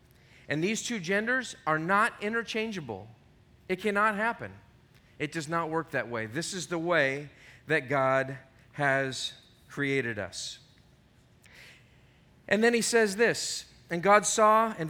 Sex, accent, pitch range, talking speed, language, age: male, American, 130-205 Hz, 135 wpm, English, 40-59